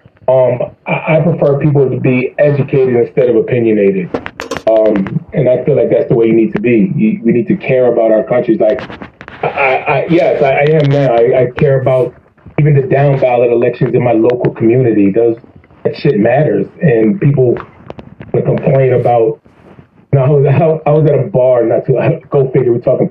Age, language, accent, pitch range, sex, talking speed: 30-49, English, American, 120-155 Hz, male, 200 wpm